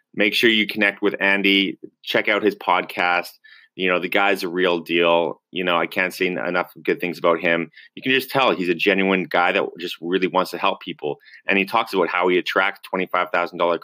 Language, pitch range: English, 85-95 Hz